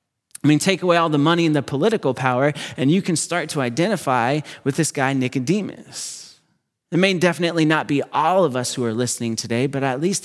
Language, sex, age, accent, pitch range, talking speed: English, male, 30-49, American, 130-165 Hz, 210 wpm